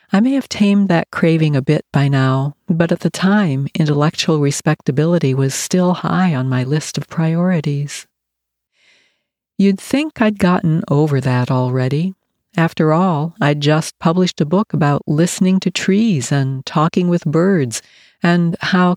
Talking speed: 150 wpm